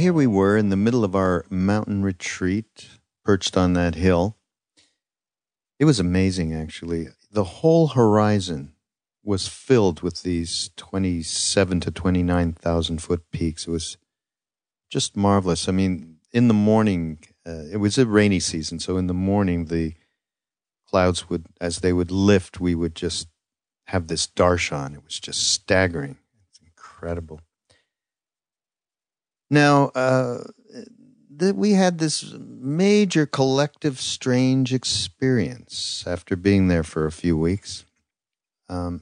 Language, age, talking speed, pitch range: English, 50-69, 130 wpm, 85-115 Hz